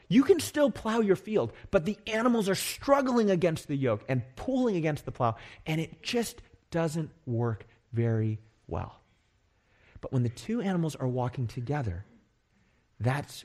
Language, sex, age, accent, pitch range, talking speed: English, male, 30-49, American, 110-160 Hz, 155 wpm